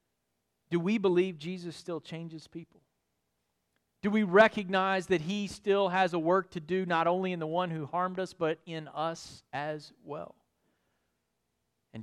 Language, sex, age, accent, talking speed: English, male, 40-59, American, 160 wpm